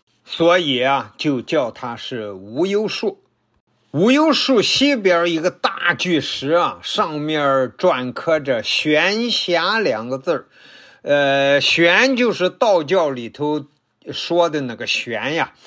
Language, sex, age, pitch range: Chinese, male, 50-69, 140-190 Hz